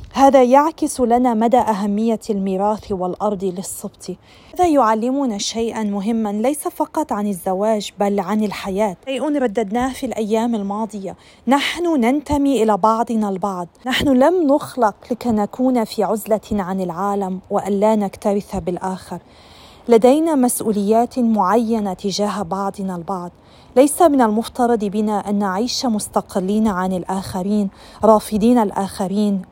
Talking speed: 120 wpm